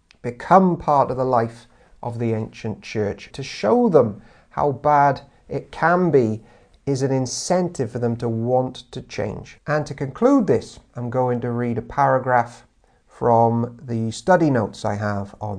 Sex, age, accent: male, 40-59, British